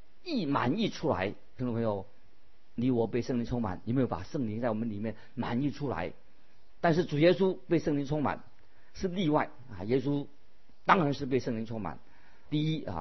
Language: Chinese